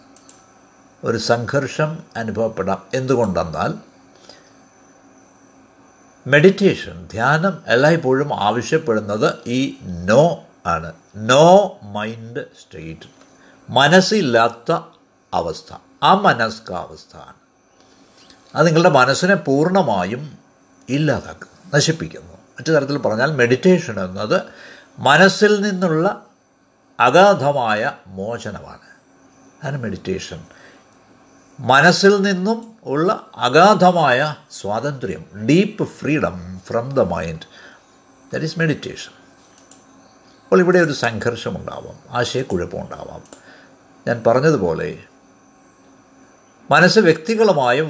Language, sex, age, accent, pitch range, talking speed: Malayalam, male, 60-79, native, 115-180 Hz, 70 wpm